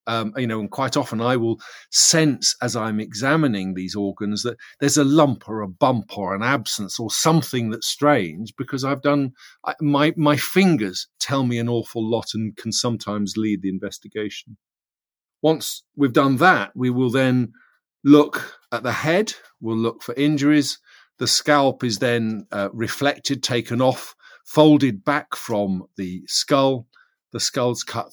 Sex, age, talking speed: male, 50-69, 165 wpm